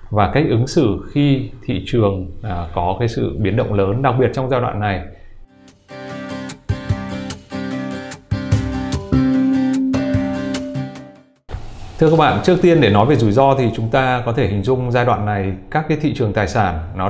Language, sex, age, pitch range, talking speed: Vietnamese, male, 20-39, 100-130 Hz, 160 wpm